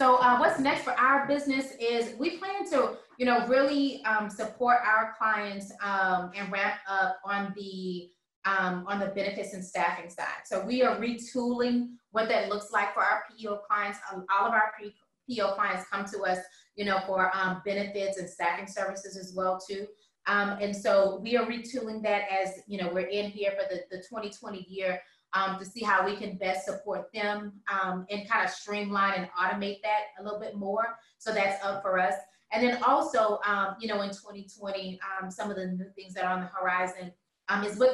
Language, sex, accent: English, female, American